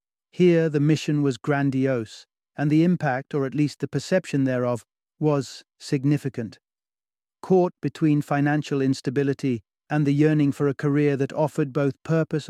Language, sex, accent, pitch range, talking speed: English, male, British, 130-160 Hz, 145 wpm